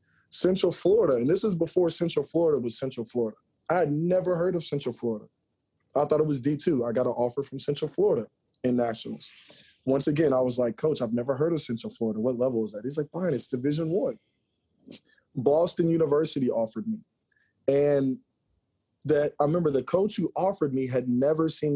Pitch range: 120-150 Hz